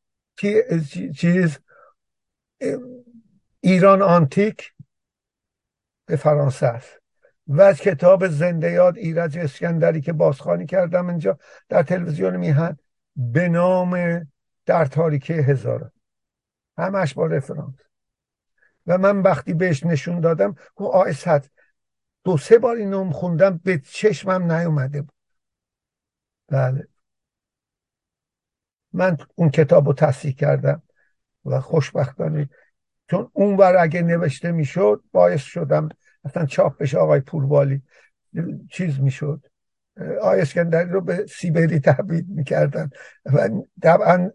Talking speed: 105 wpm